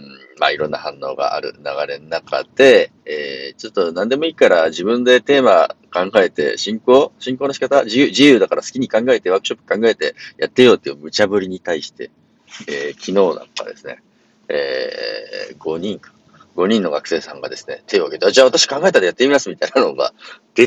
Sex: male